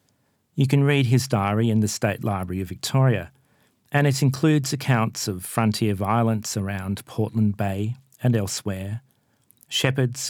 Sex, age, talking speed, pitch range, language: male, 40-59, 140 wpm, 105-125 Hz, English